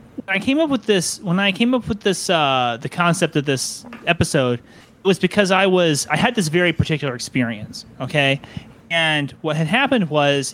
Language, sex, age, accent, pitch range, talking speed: English, male, 30-49, American, 135-180 Hz, 195 wpm